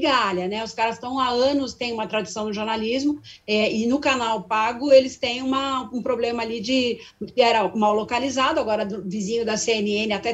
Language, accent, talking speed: Portuguese, Brazilian, 195 wpm